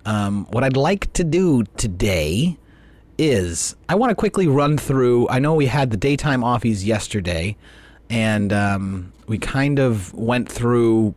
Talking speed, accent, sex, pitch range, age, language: 155 wpm, American, male, 100-135 Hz, 30-49, English